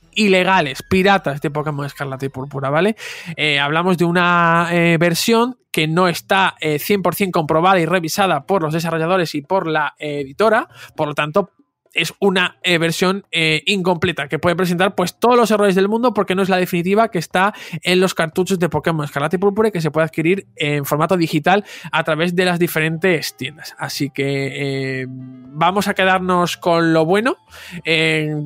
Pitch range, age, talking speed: 155-195 Hz, 20-39, 180 wpm